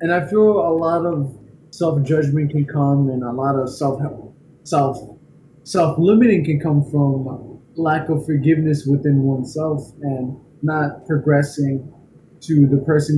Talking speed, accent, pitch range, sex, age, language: 145 wpm, American, 135-155 Hz, male, 20-39, English